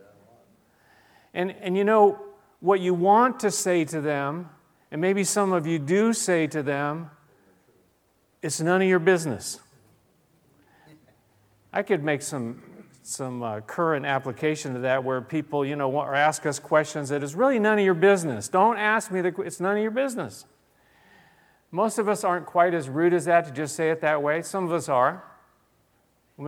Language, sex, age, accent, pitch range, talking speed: English, male, 50-69, American, 145-195 Hz, 185 wpm